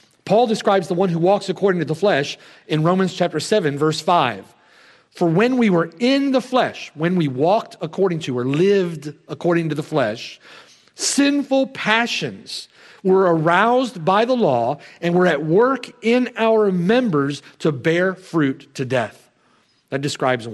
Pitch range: 165-265 Hz